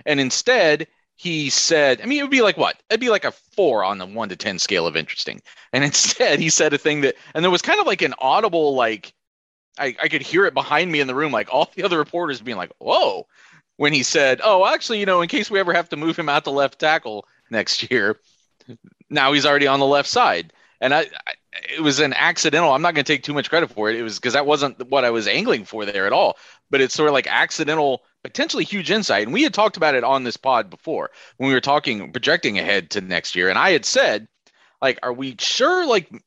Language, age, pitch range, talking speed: English, 30-49, 135-185 Hz, 255 wpm